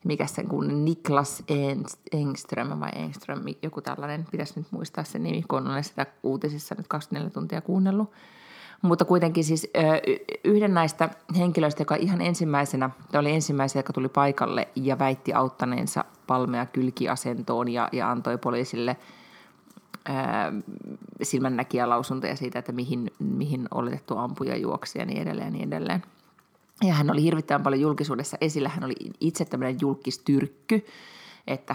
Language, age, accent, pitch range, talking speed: Finnish, 30-49, native, 130-160 Hz, 135 wpm